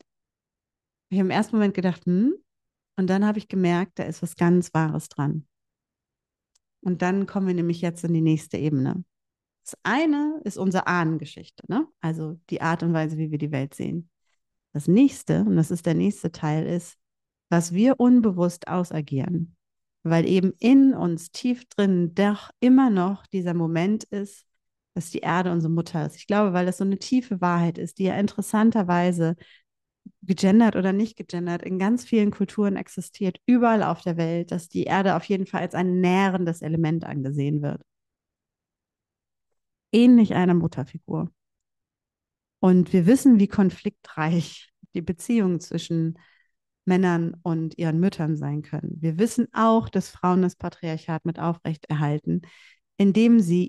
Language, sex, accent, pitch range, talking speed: German, female, German, 160-200 Hz, 155 wpm